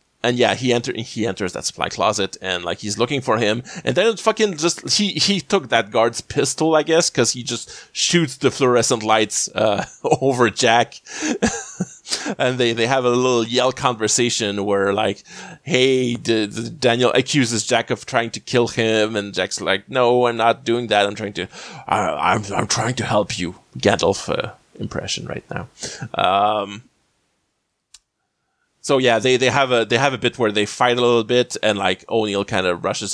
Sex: male